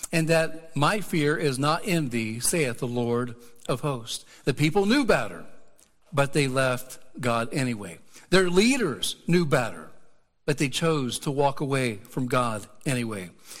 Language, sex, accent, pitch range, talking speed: English, male, American, 120-155 Hz, 155 wpm